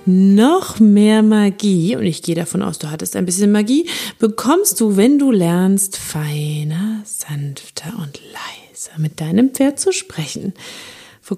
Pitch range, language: 180-250 Hz, German